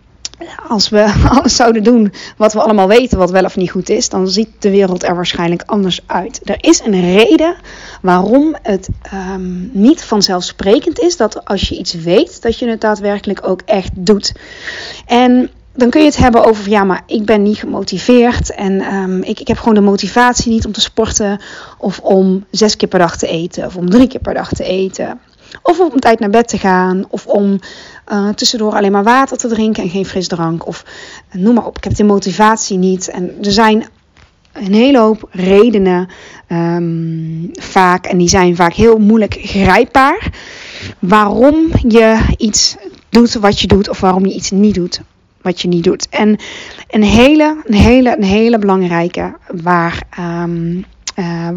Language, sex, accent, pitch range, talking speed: Dutch, female, Dutch, 185-235 Hz, 175 wpm